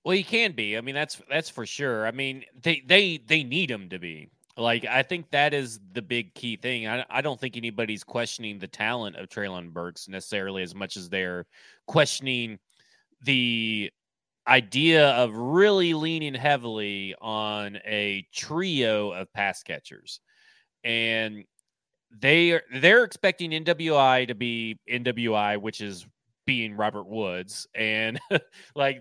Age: 30-49